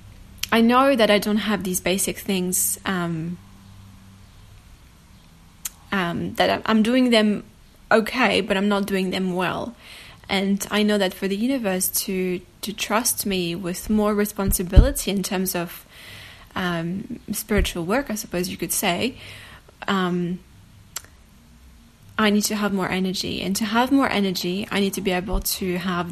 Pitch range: 180-215 Hz